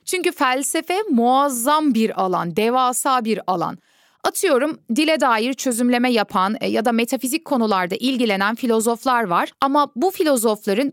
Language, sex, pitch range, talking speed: Turkish, female, 220-280 Hz, 125 wpm